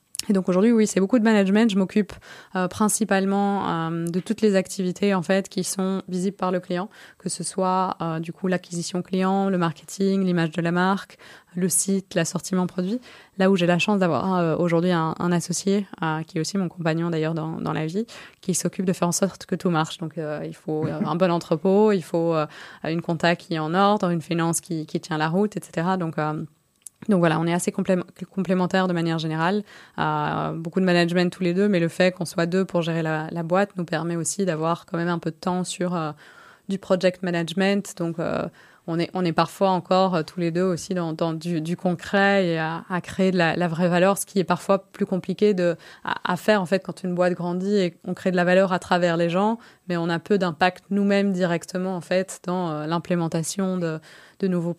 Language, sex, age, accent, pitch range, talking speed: French, female, 20-39, French, 170-190 Hz, 230 wpm